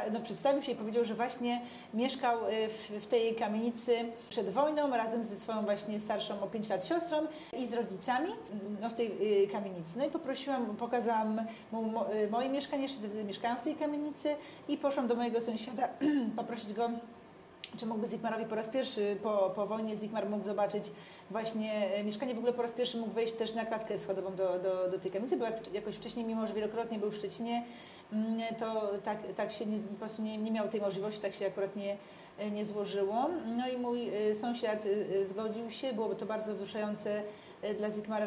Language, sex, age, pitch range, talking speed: Polish, female, 40-59, 205-235 Hz, 180 wpm